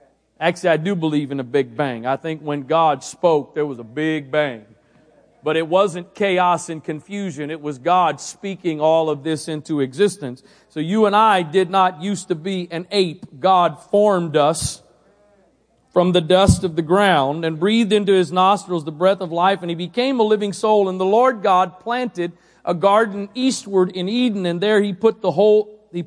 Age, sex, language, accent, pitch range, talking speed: 40-59, male, English, American, 165-205 Hz, 195 wpm